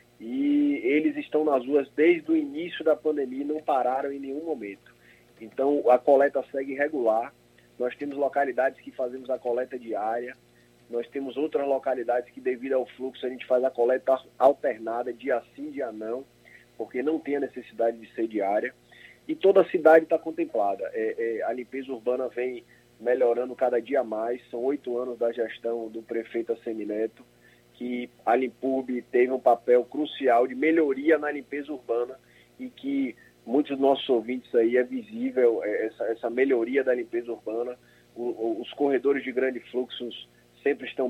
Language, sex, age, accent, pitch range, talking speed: Portuguese, male, 20-39, Brazilian, 120-160 Hz, 165 wpm